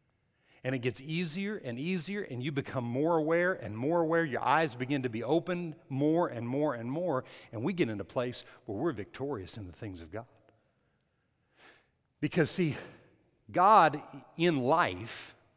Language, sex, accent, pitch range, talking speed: English, male, American, 120-155 Hz, 170 wpm